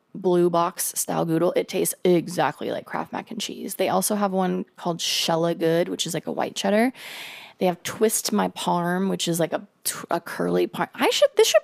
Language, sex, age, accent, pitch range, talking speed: English, female, 20-39, American, 170-220 Hz, 210 wpm